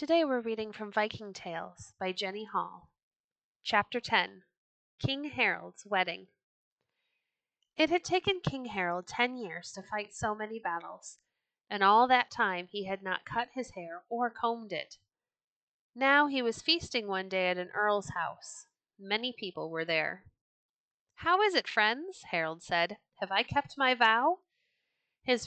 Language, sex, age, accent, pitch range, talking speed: English, female, 30-49, American, 190-280 Hz, 155 wpm